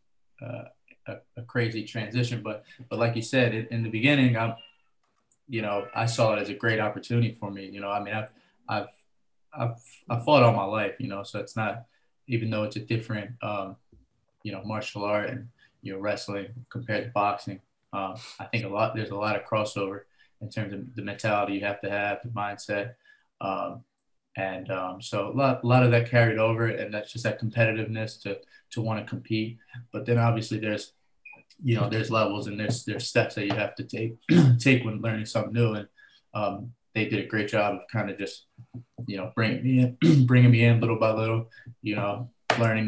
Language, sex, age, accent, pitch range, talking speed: English, male, 20-39, American, 105-120 Hz, 210 wpm